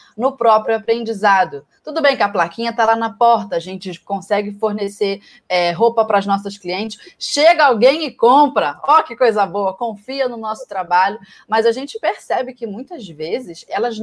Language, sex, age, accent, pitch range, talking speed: Portuguese, female, 20-39, Brazilian, 205-260 Hz, 175 wpm